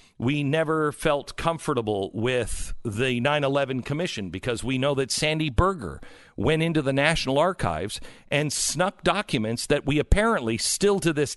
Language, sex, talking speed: English, male, 150 wpm